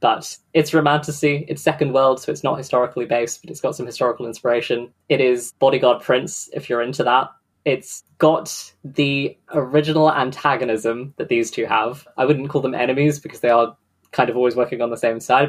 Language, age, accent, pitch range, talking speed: English, 10-29, British, 120-150 Hz, 195 wpm